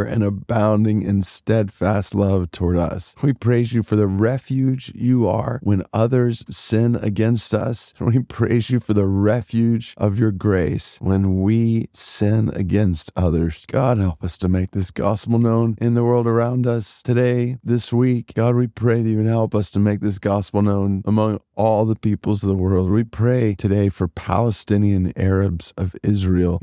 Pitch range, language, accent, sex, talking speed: 90-110 Hz, English, American, male, 175 wpm